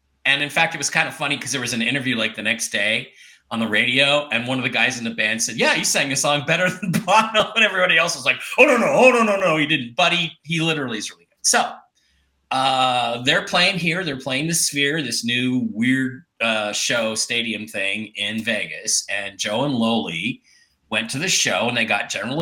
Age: 30-49